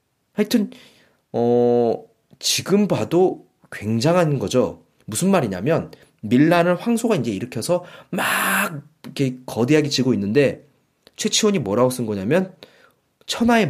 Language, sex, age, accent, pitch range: Korean, male, 30-49, native, 120-195 Hz